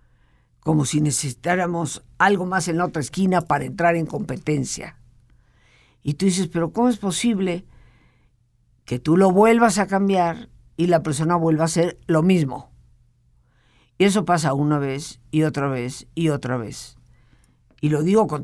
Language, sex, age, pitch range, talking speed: Spanish, female, 50-69, 120-185 Hz, 160 wpm